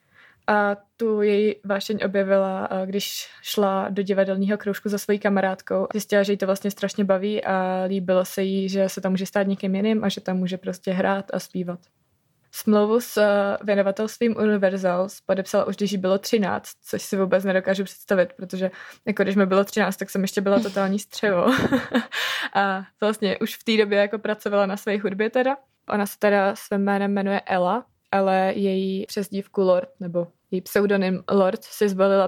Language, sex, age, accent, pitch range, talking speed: Czech, female, 20-39, native, 190-205 Hz, 175 wpm